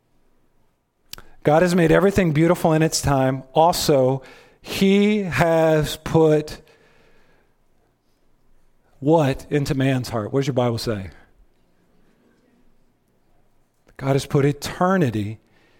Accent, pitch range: American, 130-185 Hz